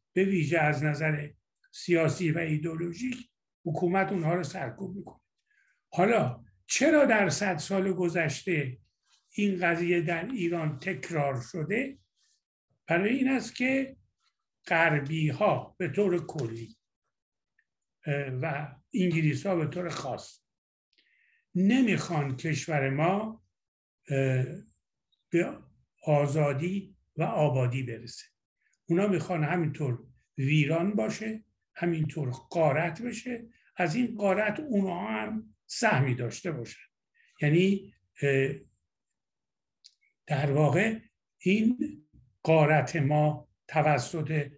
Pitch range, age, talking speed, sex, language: 140-190 Hz, 60-79, 95 wpm, male, Persian